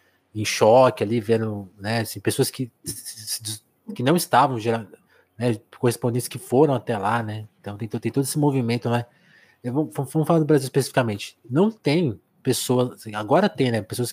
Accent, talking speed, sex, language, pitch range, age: Brazilian, 165 wpm, male, Portuguese, 120-155 Hz, 20-39